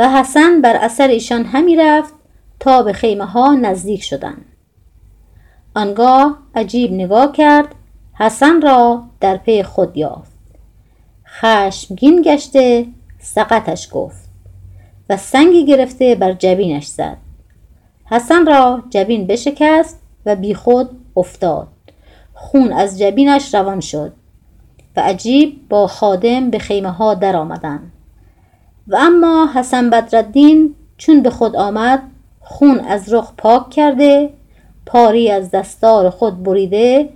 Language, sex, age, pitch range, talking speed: Persian, female, 30-49, 190-270 Hz, 115 wpm